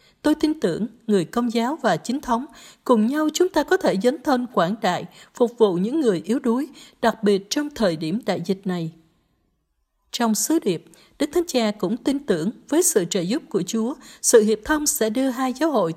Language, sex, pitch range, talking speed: Vietnamese, female, 195-260 Hz, 210 wpm